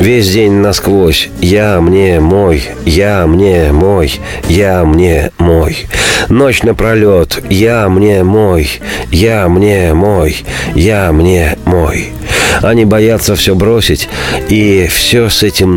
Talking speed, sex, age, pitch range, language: 70 wpm, male, 40-59, 90-120 Hz, Russian